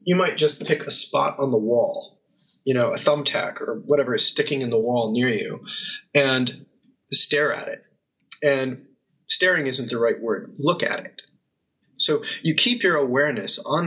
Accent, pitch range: American, 135-195 Hz